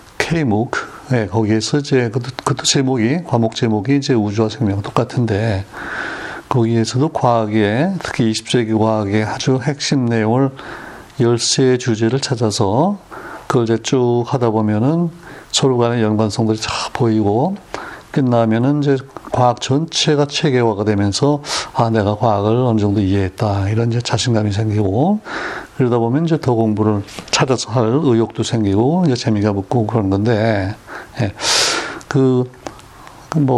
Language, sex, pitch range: Korean, male, 110-135 Hz